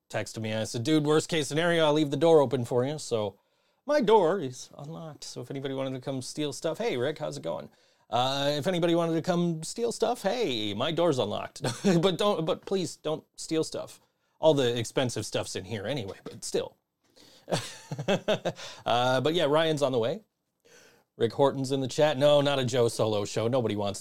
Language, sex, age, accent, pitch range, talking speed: English, male, 30-49, American, 120-160 Hz, 200 wpm